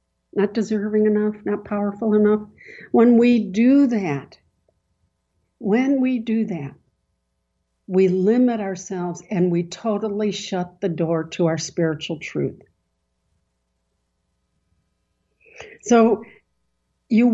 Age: 60-79